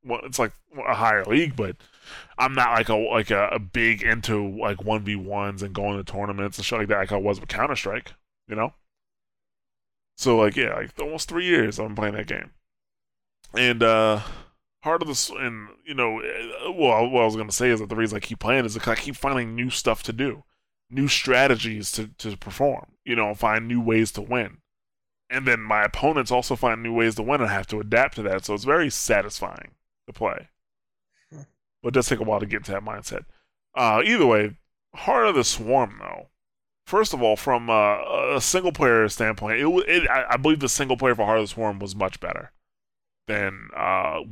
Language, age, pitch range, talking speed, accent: English, 20-39, 105-125 Hz, 215 wpm, American